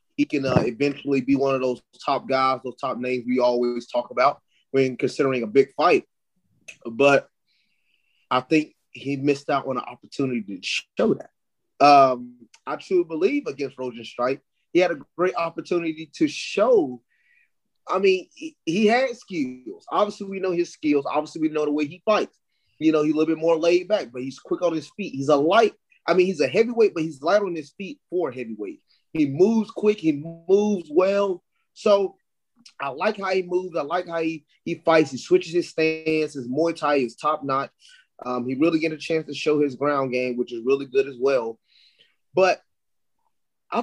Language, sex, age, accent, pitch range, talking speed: English, male, 30-49, American, 135-185 Hz, 195 wpm